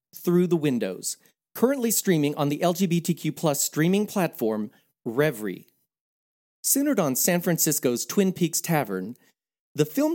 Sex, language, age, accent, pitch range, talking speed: male, English, 40-59, American, 130-205 Hz, 125 wpm